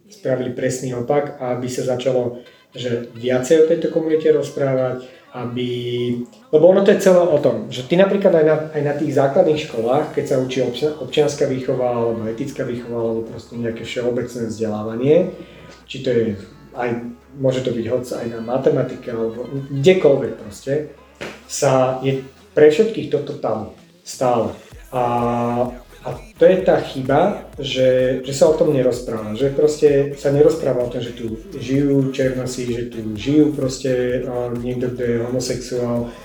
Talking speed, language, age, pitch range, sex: 155 wpm, Slovak, 40-59, 120-140 Hz, male